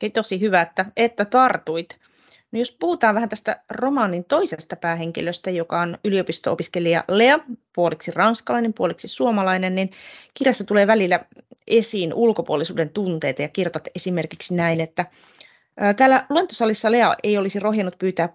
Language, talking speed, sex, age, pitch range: Finnish, 135 wpm, female, 30-49, 170-225 Hz